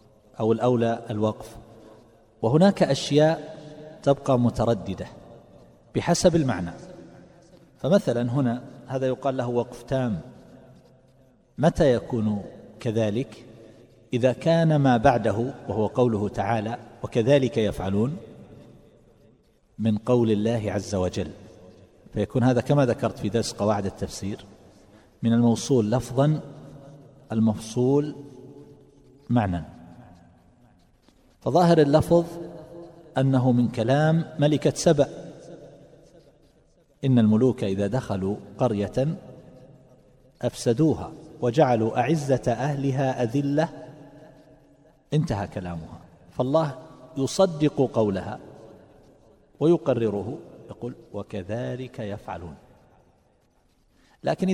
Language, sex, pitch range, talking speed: Arabic, male, 110-145 Hz, 80 wpm